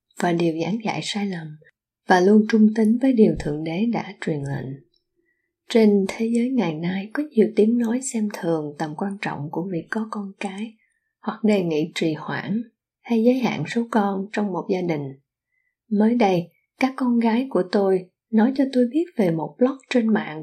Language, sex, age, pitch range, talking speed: Vietnamese, female, 20-39, 185-240 Hz, 195 wpm